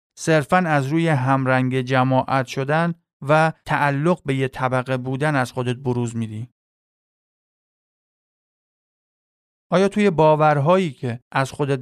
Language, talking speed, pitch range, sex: Persian, 110 wpm, 130-175 Hz, male